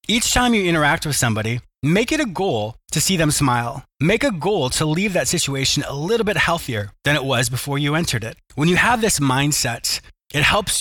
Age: 20-39